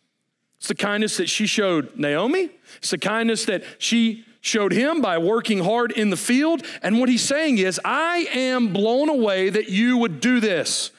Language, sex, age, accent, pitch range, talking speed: English, male, 40-59, American, 210-275 Hz, 185 wpm